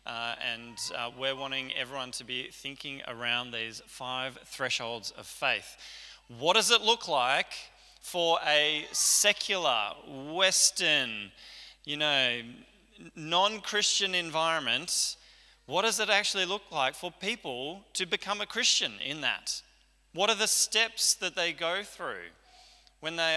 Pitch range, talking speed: 135-180 Hz, 135 wpm